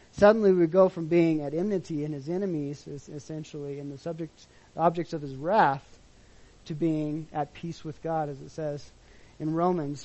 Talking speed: 175 wpm